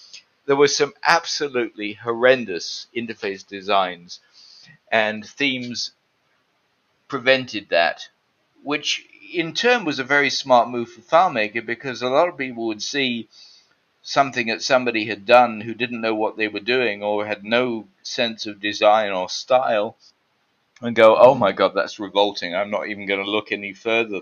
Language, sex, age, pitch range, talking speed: English, male, 50-69, 105-125 Hz, 155 wpm